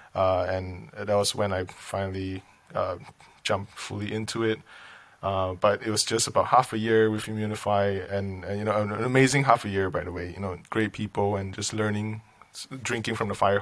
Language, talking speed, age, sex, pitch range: English, 205 wpm, 20-39, male, 100-110 Hz